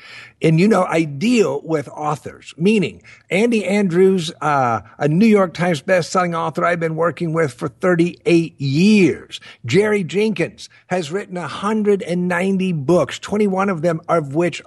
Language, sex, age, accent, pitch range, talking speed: English, male, 50-69, American, 175-225 Hz, 145 wpm